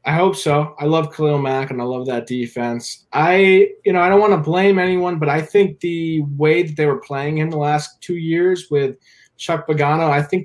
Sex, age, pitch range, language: male, 20-39, 130-160 Hz, English